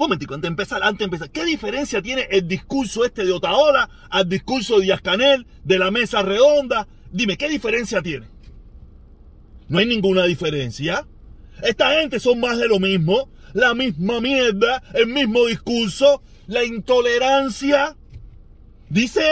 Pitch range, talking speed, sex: 175-270 Hz, 140 wpm, male